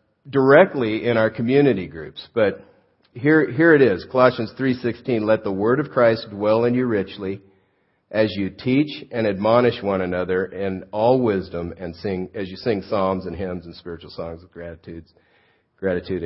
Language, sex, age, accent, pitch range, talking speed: English, male, 50-69, American, 100-125 Hz, 160 wpm